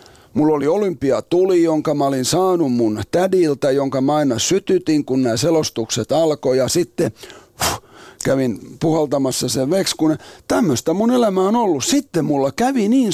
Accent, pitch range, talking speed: native, 150-230 Hz, 150 wpm